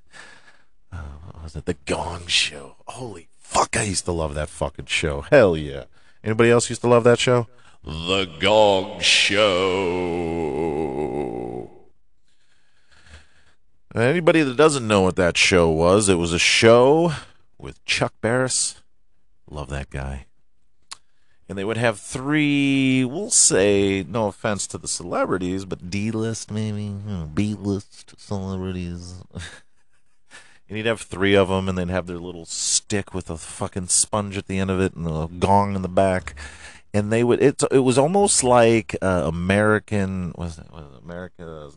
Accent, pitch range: American, 80-110 Hz